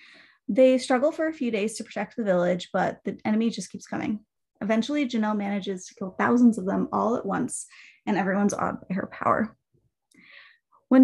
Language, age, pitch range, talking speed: English, 20-39, 200-250 Hz, 185 wpm